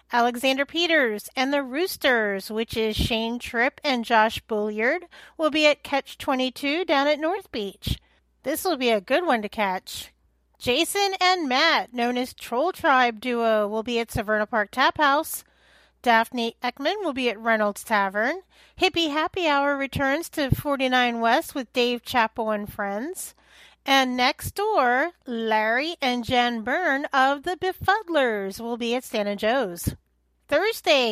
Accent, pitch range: American, 230-295 Hz